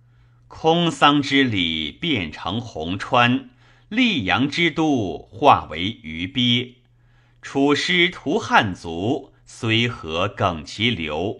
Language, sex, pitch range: Chinese, male, 115-140 Hz